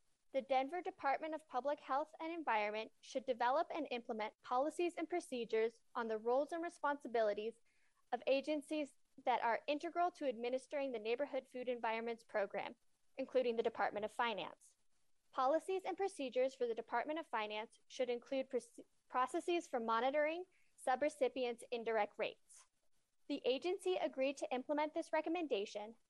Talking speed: 140 wpm